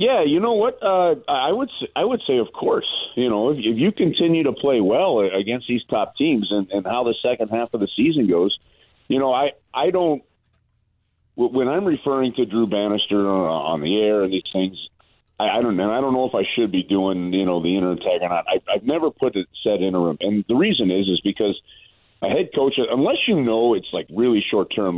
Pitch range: 100-125 Hz